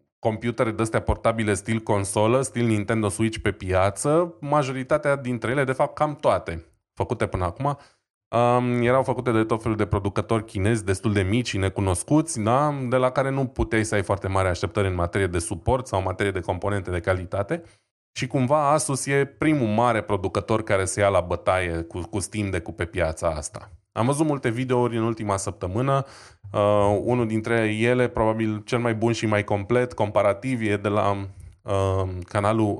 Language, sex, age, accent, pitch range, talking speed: Romanian, male, 20-39, native, 100-120 Hz, 175 wpm